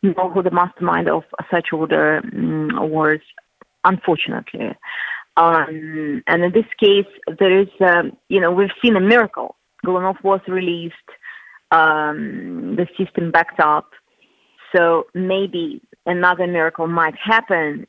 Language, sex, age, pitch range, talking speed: English, female, 30-49, 160-205 Hz, 120 wpm